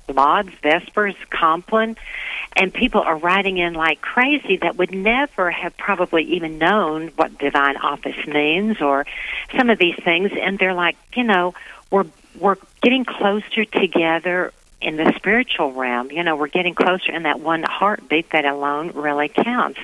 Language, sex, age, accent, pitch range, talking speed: English, female, 50-69, American, 155-205 Hz, 160 wpm